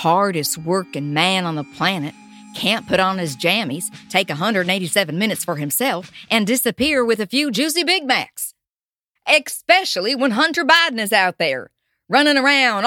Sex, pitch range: female, 175-290 Hz